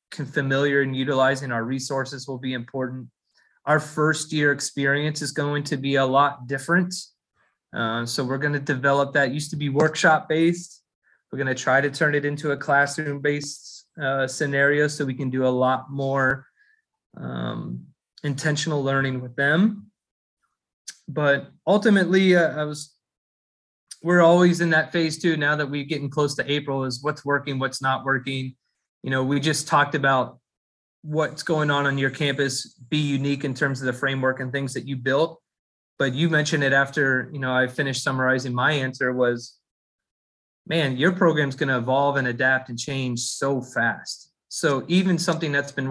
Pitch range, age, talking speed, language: 130-155 Hz, 20-39, 175 wpm, English